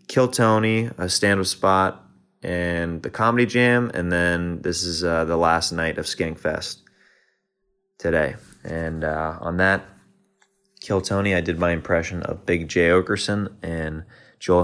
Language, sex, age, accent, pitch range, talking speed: English, male, 20-39, American, 85-115 Hz, 150 wpm